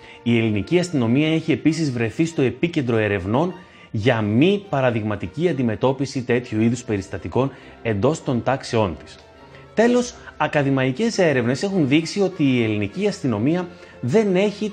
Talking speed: 125 wpm